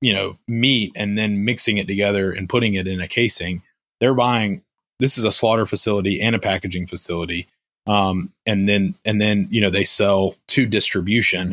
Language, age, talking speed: English, 20-39, 185 wpm